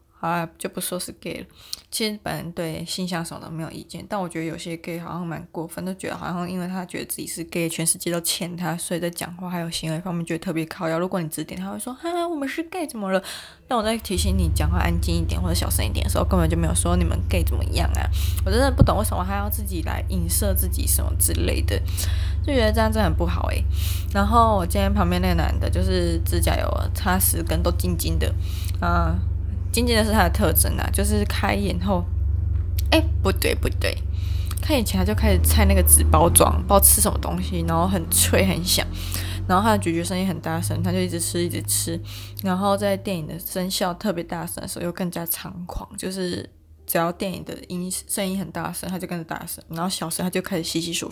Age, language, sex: 20-39, Chinese, female